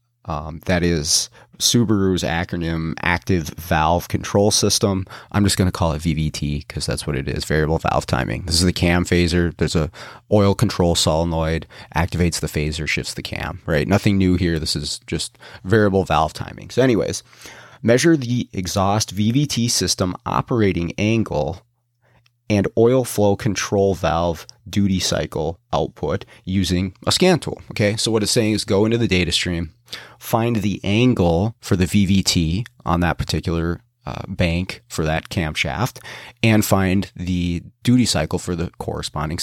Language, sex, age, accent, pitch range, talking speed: English, male, 30-49, American, 85-110 Hz, 160 wpm